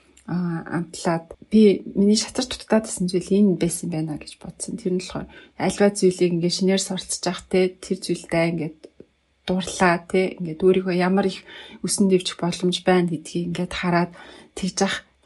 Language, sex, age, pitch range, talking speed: English, female, 30-49, 175-200 Hz, 135 wpm